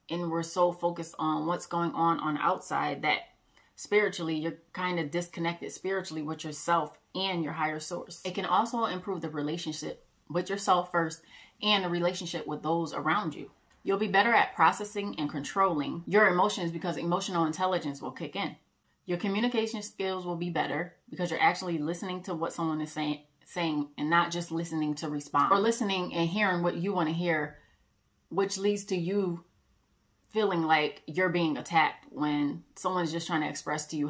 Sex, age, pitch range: female, 30-49, 155-185 Hz